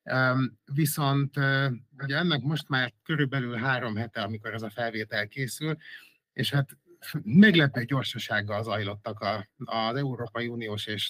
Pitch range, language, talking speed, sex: 115-135 Hz, Hungarian, 125 wpm, male